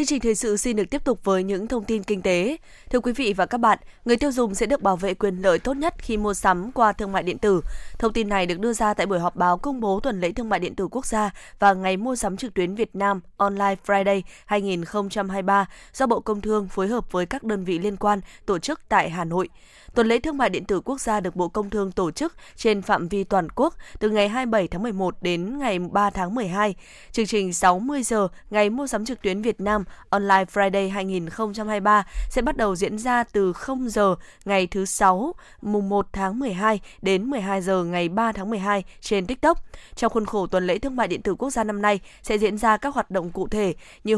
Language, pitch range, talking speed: Vietnamese, 190-230 Hz, 240 wpm